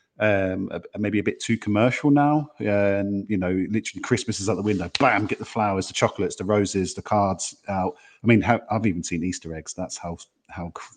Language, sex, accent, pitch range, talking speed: English, male, British, 95-110 Hz, 205 wpm